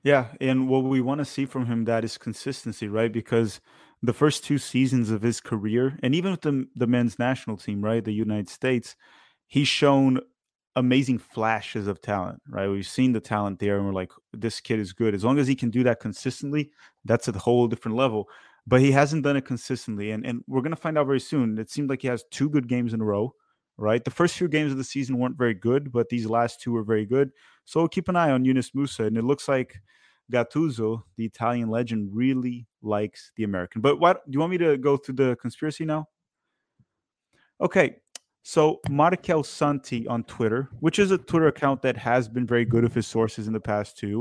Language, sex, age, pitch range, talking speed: English, male, 30-49, 115-140 Hz, 220 wpm